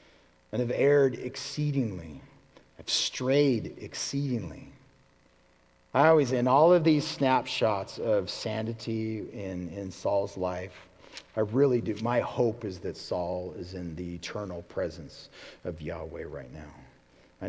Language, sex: English, male